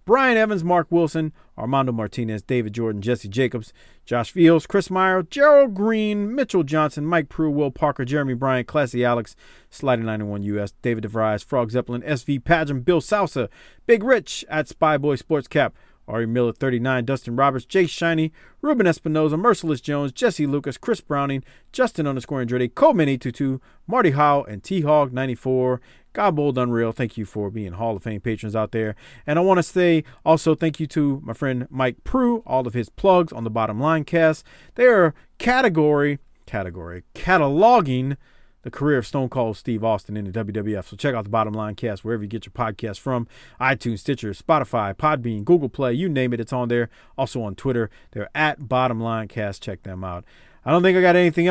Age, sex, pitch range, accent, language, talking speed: 40-59, male, 115-160 Hz, American, English, 190 wpm